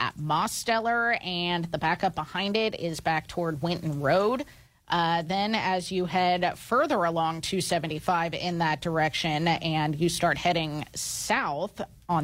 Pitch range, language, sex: 155-185 Hz, English, female